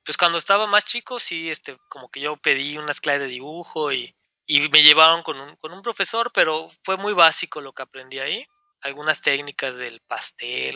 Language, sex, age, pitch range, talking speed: Spanish, male, 20-39, 140-195 Hz, 200 wpm